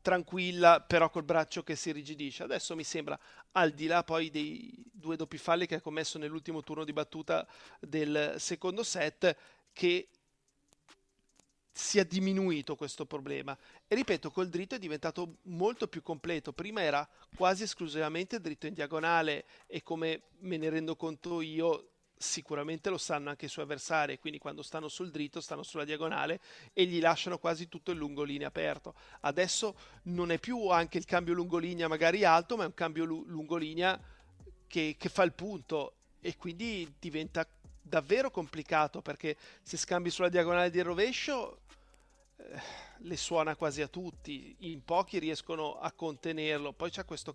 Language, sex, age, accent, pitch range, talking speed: Italian, male, 40-59, native, 155-180 Hz, 165 wpm